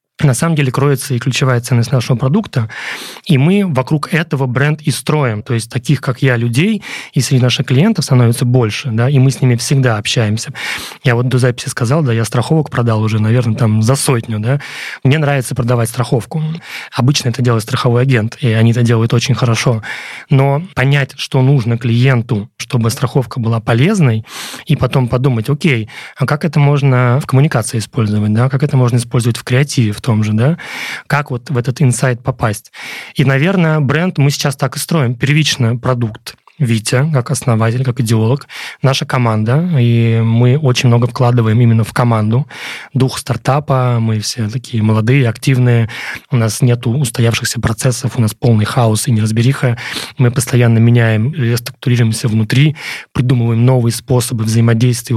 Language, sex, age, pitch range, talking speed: Russian, male, 30-49, 115-140 Hz, 165 wpm